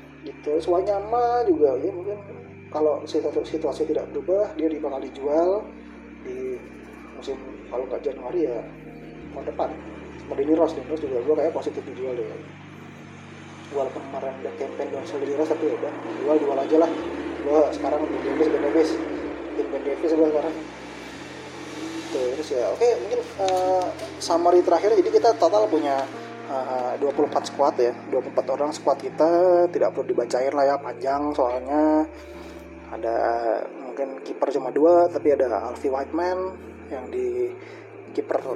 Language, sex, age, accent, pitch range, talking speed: Indonesian, male, 20-39, native, 140-230 Hz, 135 wpm